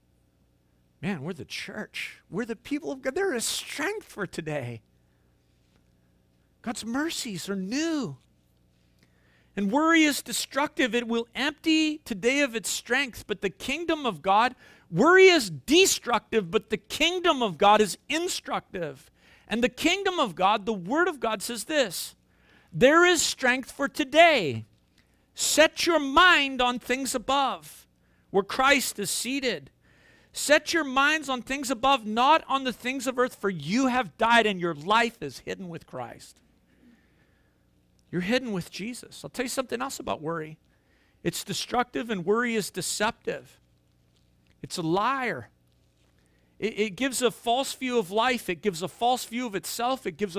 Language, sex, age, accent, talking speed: English, male, 50-69, American, 155 wpm